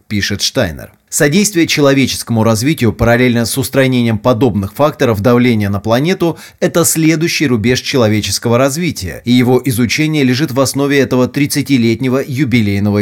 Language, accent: Russian, native